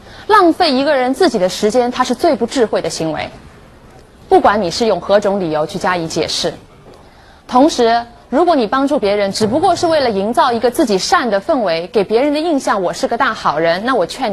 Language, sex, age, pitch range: Chinese, female, 20-39, 185-290 Hz